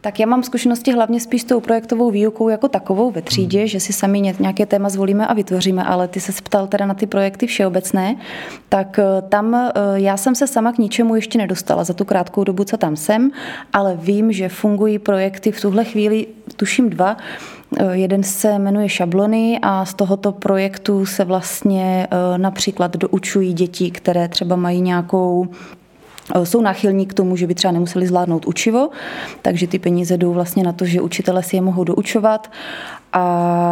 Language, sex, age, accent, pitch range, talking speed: Czech, female, 20-39, native, 185-210 Hz, 175 wpm